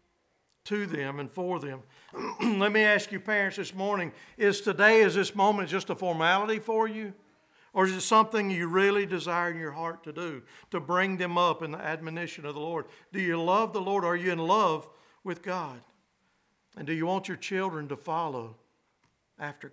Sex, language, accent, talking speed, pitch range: male, English, American, 195 wpm, 160-200 Hz